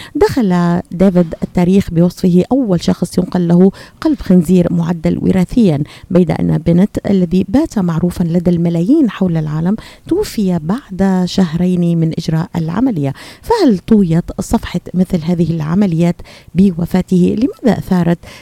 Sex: female